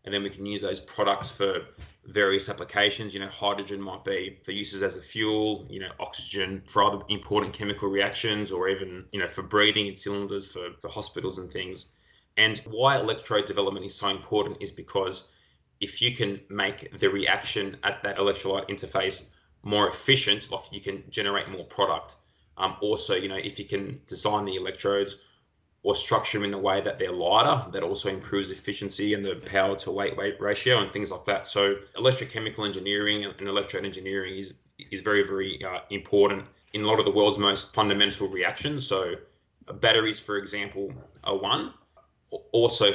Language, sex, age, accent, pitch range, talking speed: English, male, 20-39, Australian, 95-105 Hz, 180 wpm